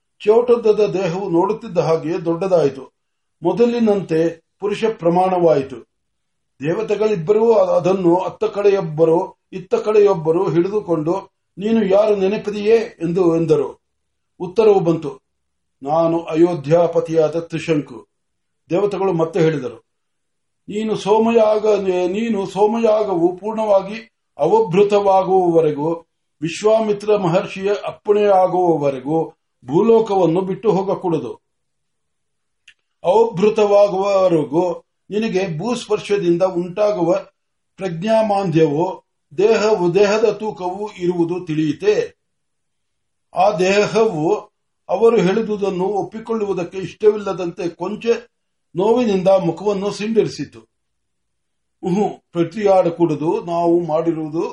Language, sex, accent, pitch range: Marathi, male, native, 165-210 Hz